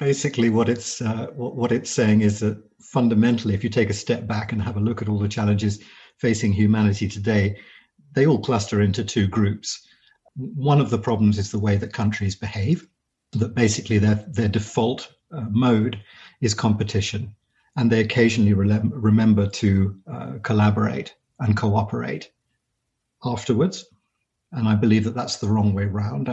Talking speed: 165 wpm